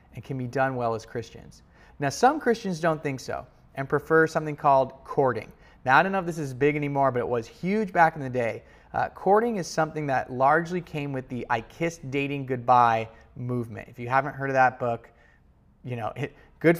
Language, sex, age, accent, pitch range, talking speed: English, male, 30-49, American, 125-155 Hz, 215 wpm